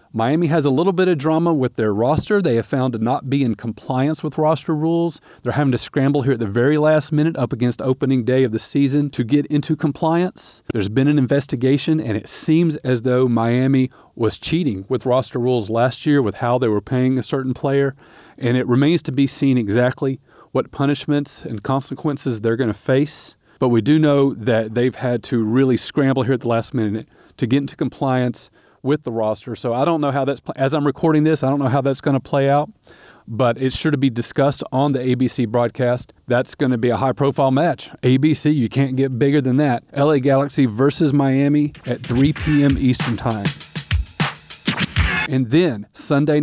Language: English